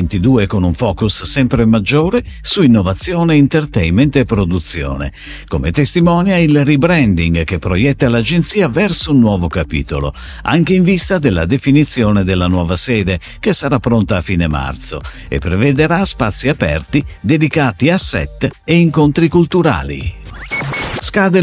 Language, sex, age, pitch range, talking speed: Italian, male, 50-69, 90-150 Hz, 130 wpm